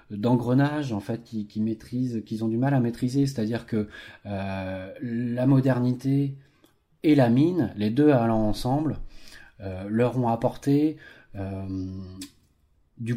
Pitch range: 100-130 Hz